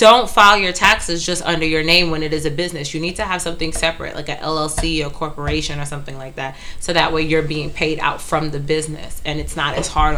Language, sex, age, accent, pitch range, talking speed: English, female, 20-39, American, 150-170 Hz, 255 wpm